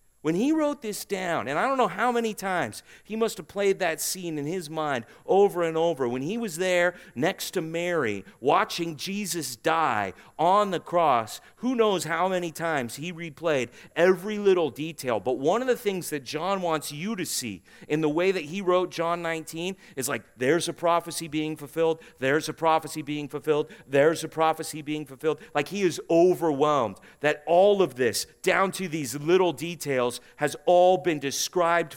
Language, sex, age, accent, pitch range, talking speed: English, male, 40-59, American, 140-185 Hz, 190 wpm